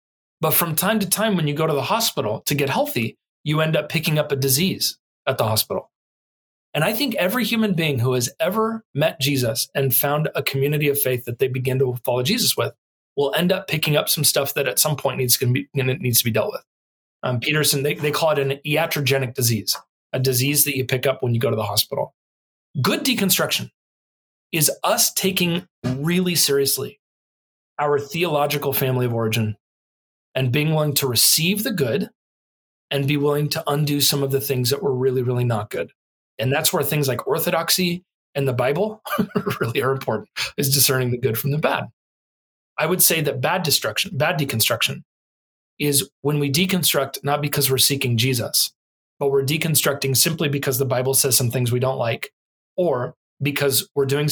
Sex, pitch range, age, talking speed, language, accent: male, 130-155 Hz, 30-49, 195 wpm, English, American